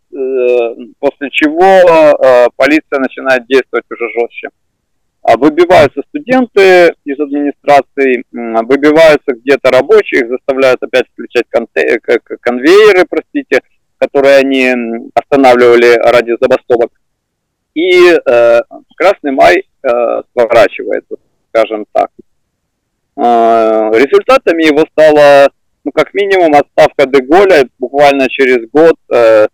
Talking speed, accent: 100 wpm, native